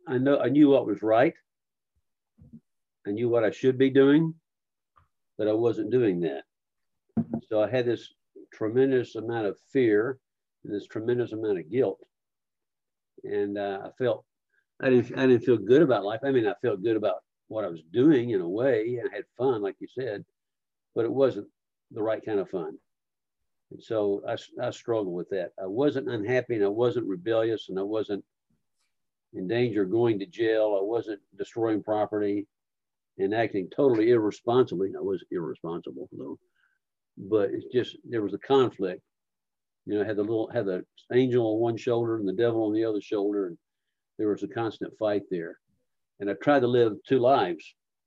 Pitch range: 105-140 Hz